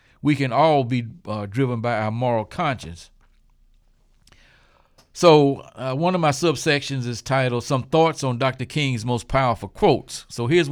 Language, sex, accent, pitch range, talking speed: English, male, American, 120-150 Hz, 155 wpm